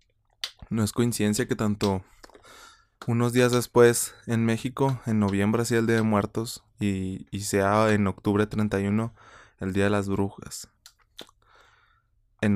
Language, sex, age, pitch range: Spanish, male, 20-39, 100-115 Hz